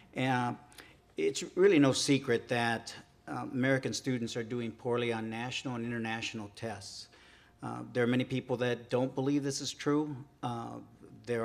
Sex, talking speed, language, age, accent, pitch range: male, 155 wpm, English, 50-69, American, 115-135 Hz